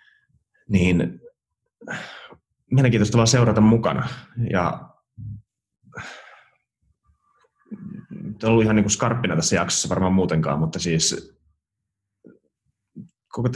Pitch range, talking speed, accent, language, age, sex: 90-115 Hz, 75 wpm, native, Finnish, 30-49, male